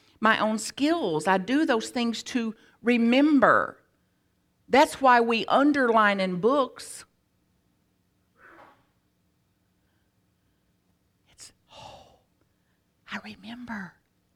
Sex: female